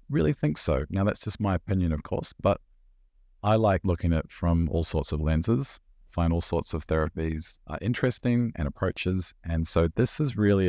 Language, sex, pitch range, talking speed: English, male, 80-100 Hz, 195 wpm